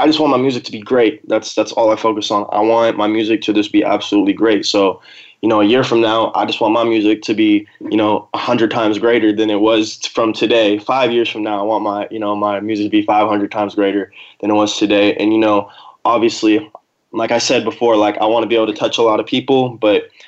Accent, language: American, English